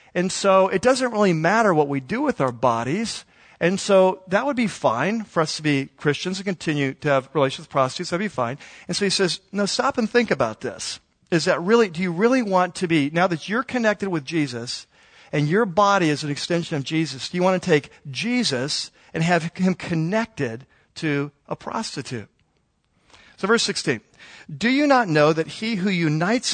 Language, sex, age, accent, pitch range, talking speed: English, male, 50-69, American, 145-190 Hz, 205 wpm